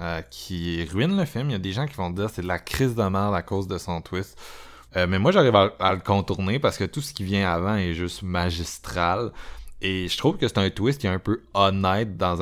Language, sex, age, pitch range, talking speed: French, male, 20-39, 90-110 Hz, 265 wpm